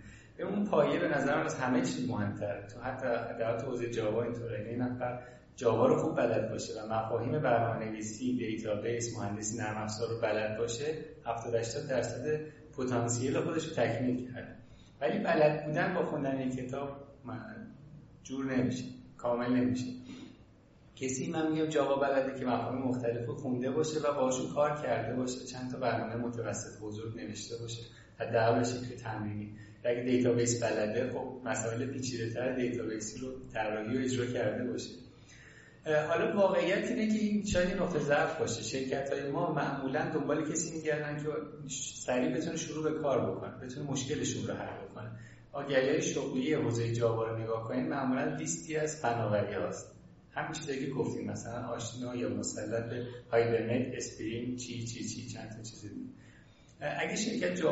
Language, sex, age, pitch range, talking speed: Persian, male, 30-49, 115-140 Hz, 155 wpm